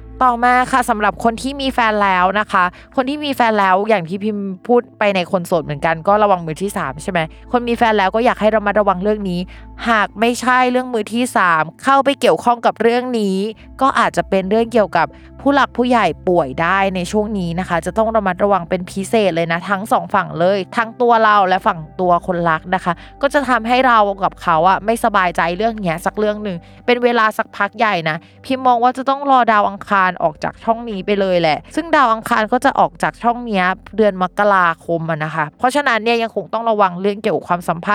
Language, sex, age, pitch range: Thai, female, 20-39, 185-235 Hz